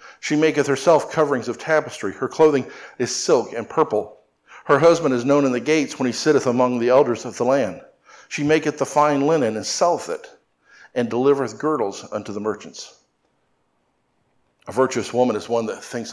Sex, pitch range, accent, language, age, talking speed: male, 120-145 Hz, American, English, 50-69, 180 wpm